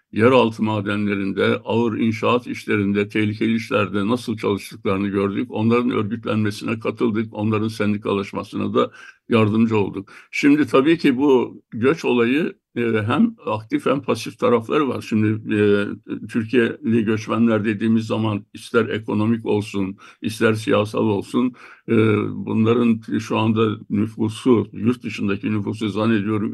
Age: 60-79